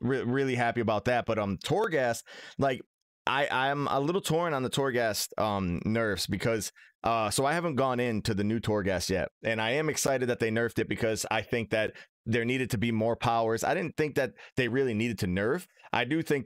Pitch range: 110-125 Hz